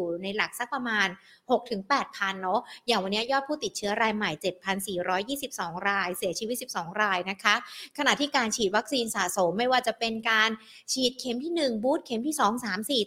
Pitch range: 195-245 Hz